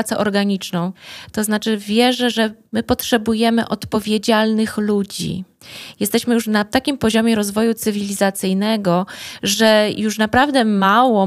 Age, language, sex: 20-39, Polish, female